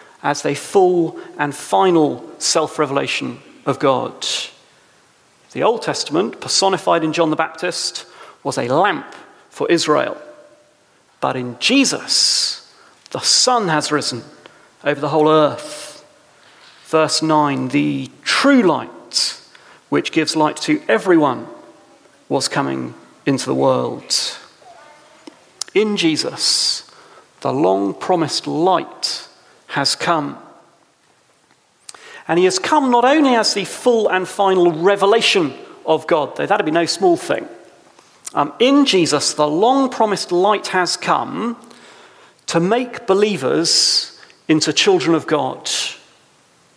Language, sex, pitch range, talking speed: English, male, 155-260 Hz, 115 wpm